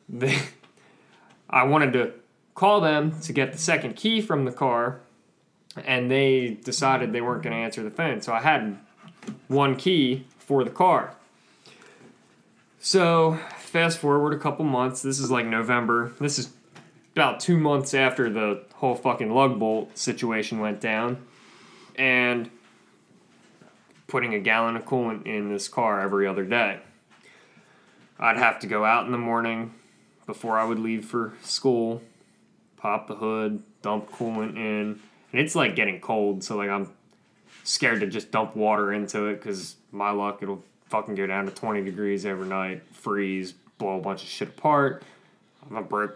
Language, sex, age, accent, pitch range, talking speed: English, male, 20-39, American, 105-135 Hz, 160 wpm